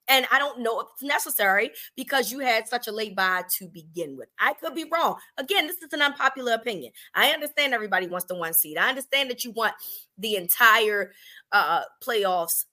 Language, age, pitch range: English, 30-49, 200-280 Hz